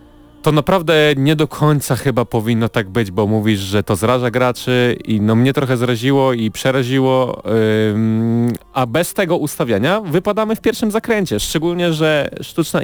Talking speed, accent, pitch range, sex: 160 wpm, native, 110-145 Hz, male